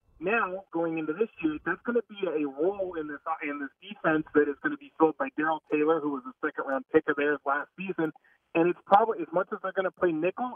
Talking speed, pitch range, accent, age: 255 wpm, 145-190 Hz, American, 30-49